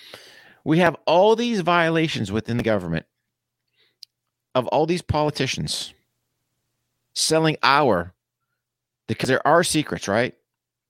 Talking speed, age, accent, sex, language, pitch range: 105 wpm, 50-69, American, male, English, 115-170 Hz